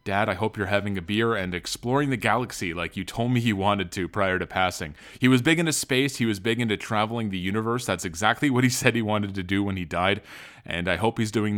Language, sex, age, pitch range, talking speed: English, male, 30-49, 100-125 Hz, 260 wpm